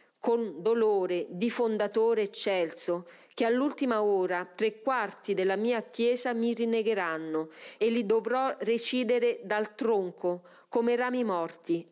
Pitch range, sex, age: 185-240 Hz, female, 40-59